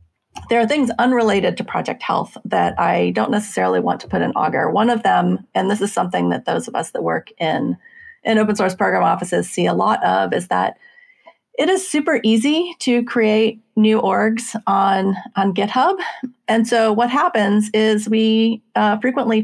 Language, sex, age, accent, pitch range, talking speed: English, female, 30-49, American, 190-240 Hz, 185 wpm